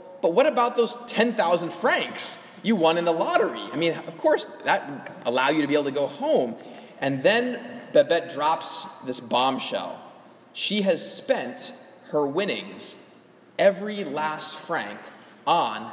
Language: English